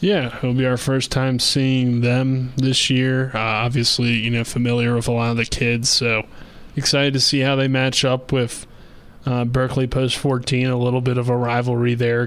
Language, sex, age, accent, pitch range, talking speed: English, male, 20-39, American, 120-135 Hz, 195 wpm